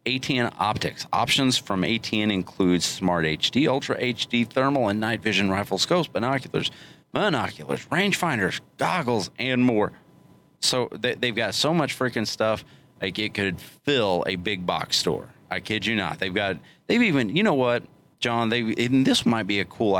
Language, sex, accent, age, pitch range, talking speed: English, male, American, 30-49, 95-120 Hz, 170 wpm